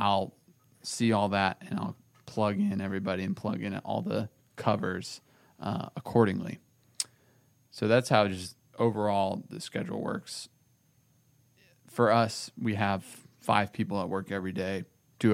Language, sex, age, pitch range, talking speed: English, male, 20-39, 105-125 Hz, 140 wpm